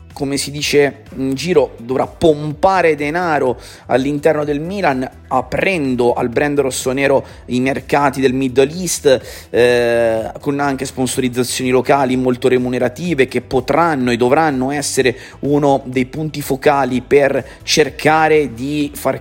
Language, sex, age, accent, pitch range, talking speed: Italian, male, 30-49, native, 115-140 Hz, 125 wpm